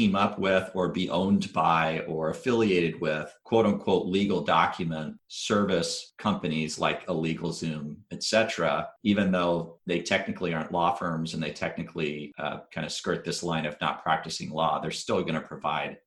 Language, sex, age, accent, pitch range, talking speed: English, male, 40-59, American, 80-100 Hz, 170 wpm